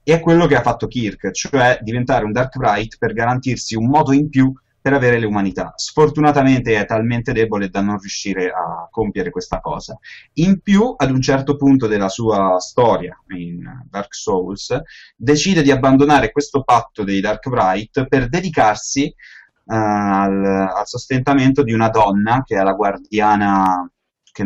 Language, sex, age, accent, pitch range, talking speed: Italian, male, 30-49, native, 100-135 Hz, 160 wpm